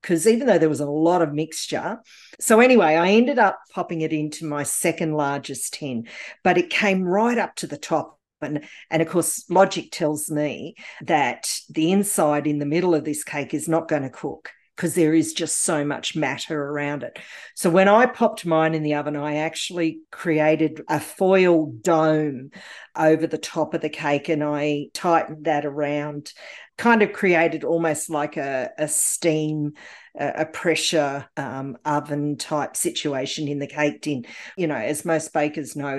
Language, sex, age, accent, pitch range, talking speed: English, female, 50-69, Australian, 150-170 Hz, 180 wpm